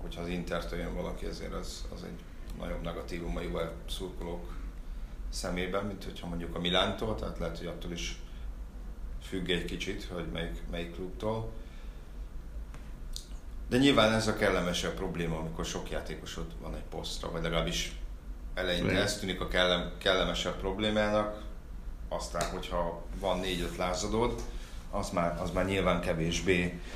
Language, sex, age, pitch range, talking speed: Hungarian, male, 40-59, 85-95 Hz, 140 wpm